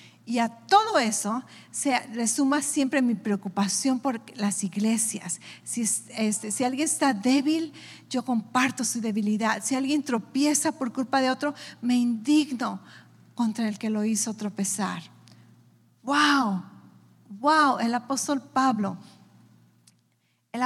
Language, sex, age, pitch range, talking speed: English, female, 40-59, 230-295 Hz, 120 wpm